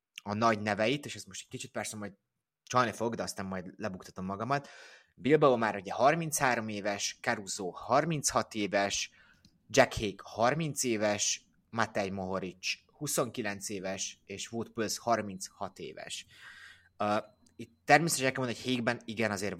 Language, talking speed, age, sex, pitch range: Hungarian, 145 wpm, 20-39, male, 100-120 Hz